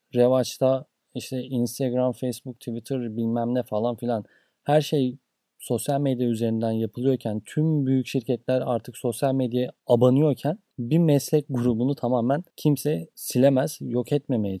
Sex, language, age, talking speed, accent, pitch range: male, Turkish, 30-49, 125 wpm, native, 125-165 Hz